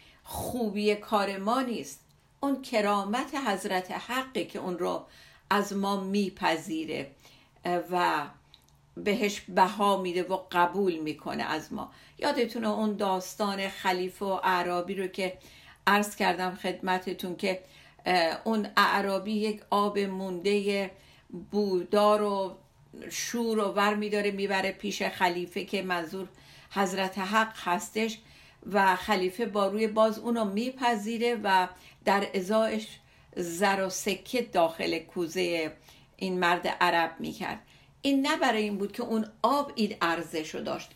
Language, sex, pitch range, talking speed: Persian, female, 185-220 Hz, 125 wpm